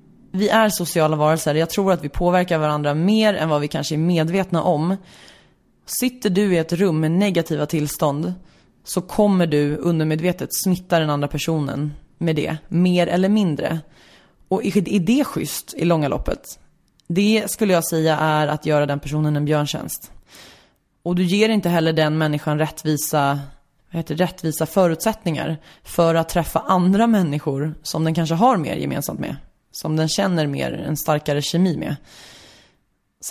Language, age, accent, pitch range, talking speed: English, 20-39, Swedish, 155-190 Hz, 160 wpm